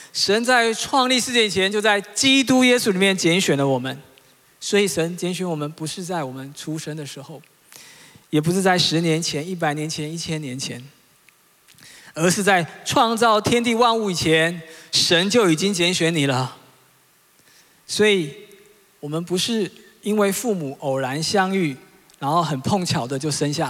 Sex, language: male, Chinese